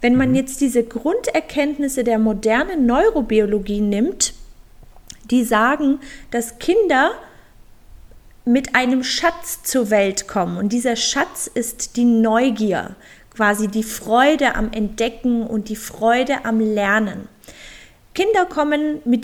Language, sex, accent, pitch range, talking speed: German, female, German, 220-275 Hz, 120 wpm